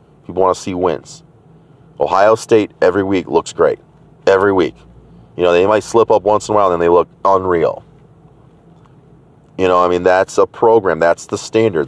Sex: male